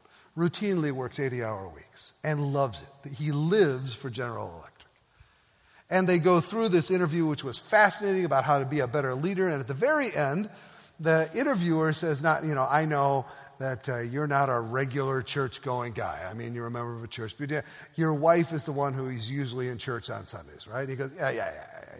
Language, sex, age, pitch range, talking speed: English, male, 50-69, 130-165 Hz, 215 wpm